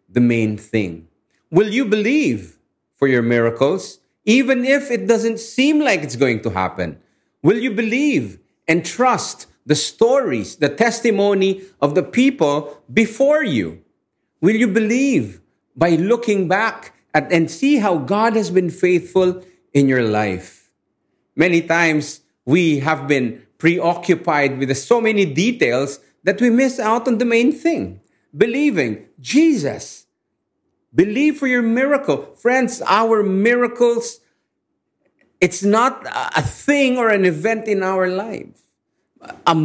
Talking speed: 130 wpm